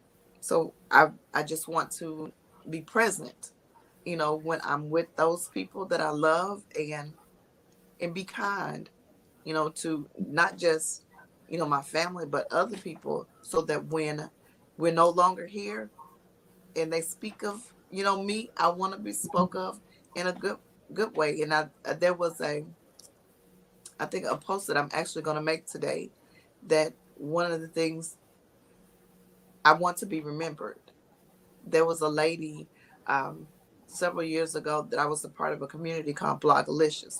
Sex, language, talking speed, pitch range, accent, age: female, English, 170 wpm, 150-170 Hz, American, 20-39